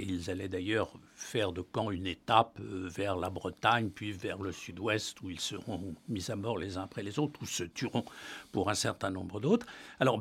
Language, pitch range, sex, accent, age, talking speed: French, 100-135 Hz, male, French, 60-79, 210 wpm